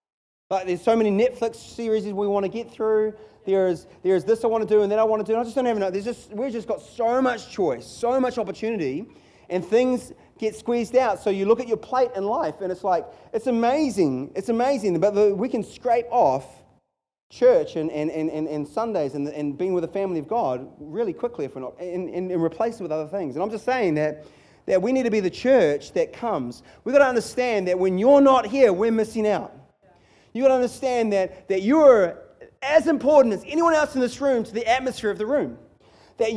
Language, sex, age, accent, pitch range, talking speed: English, male, 30-49, Australian, 200-275 Hz, 240 wpm